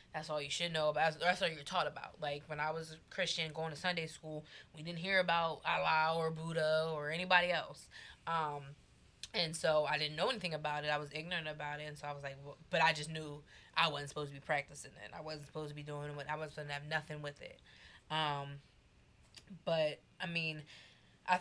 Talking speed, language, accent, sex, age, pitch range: 235 wpm, English, American, female, 20-39, 145-165 Hz